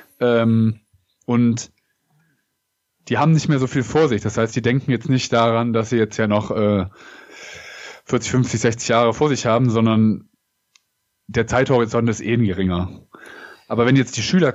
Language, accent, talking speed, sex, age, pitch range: German, German, 170 wpm, male, 20-39, 110-125 Hz